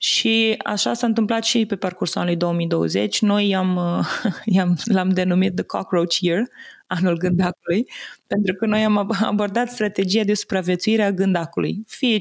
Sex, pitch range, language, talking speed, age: female, 180-225 Hz, Romanian, 145 wpm, 20-39